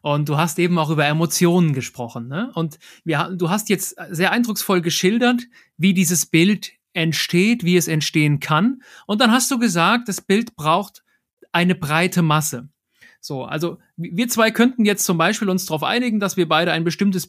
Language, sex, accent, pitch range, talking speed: German, male, German, 160-210 Hz, 180 wpm